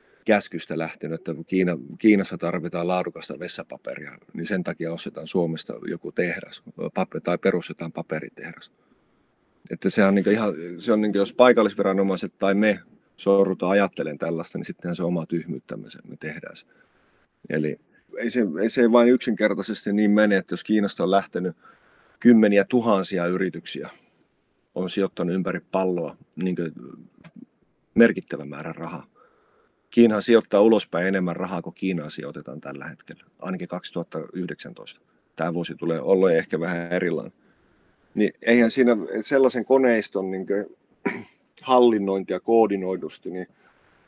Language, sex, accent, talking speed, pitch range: Finnish, male, native, 130 wpm, 90-110 Hz